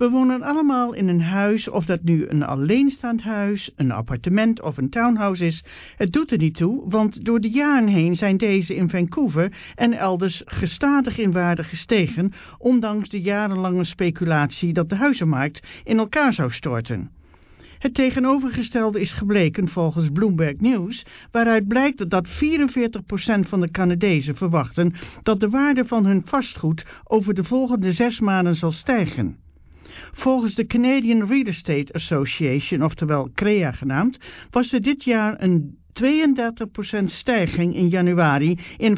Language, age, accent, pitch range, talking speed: English, 60-79, Dutch, 165-235 Hz, 150 wpm